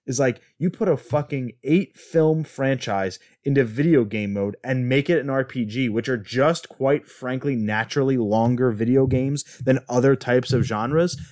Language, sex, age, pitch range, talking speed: English, male, 30-49, 120-150 Hz, 170 wpm